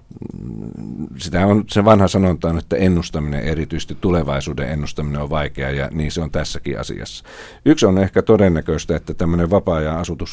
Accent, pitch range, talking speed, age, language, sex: native, 70-85 Hz, 165 wpm, 50-69, Finnish, male